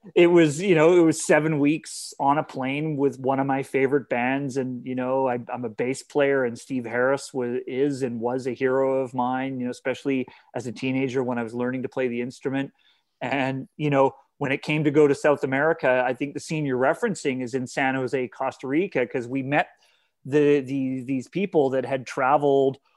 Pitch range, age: 130-150 Hz, 30-49